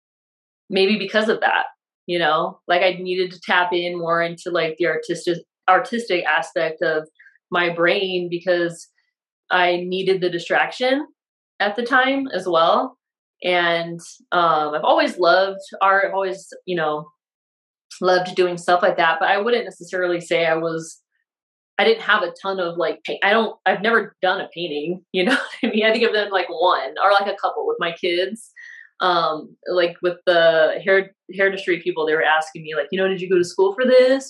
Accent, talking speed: American, 190 wpm